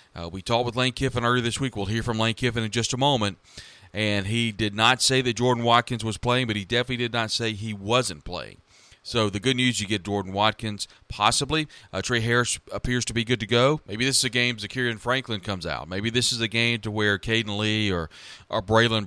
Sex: male